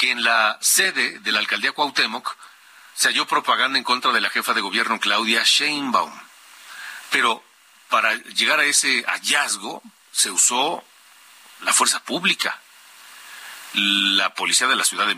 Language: Spanish